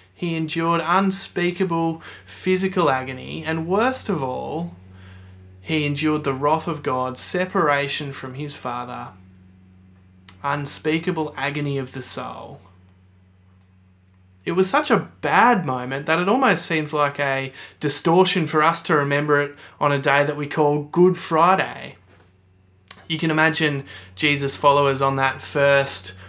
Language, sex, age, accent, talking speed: English, male, 20-39, Australian, 130 wpm